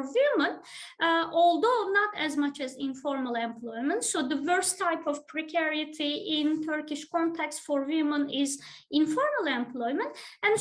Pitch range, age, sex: 275-335 Hz, 20-39, female